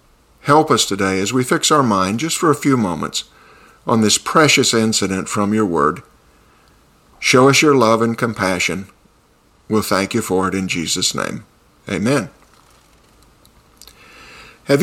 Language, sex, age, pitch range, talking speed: English, male, 50-69, 105-135 Hz, 145 wpm